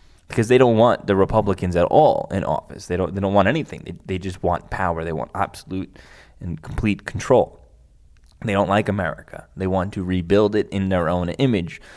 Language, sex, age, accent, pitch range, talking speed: English, male, 10-29, American, 85-105 Hz, 200 wpm